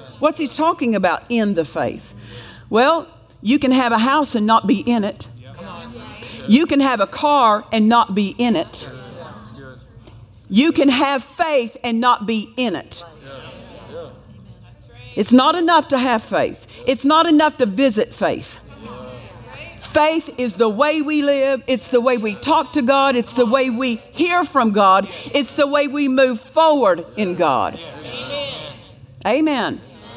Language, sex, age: English, female, 50-69